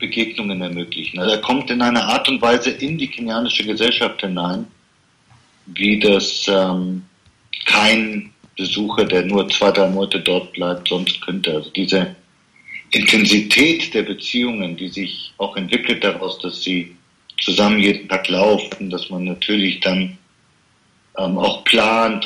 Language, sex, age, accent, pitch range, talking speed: German, male, 40-59, German, 95-115 Hz, 140 wpm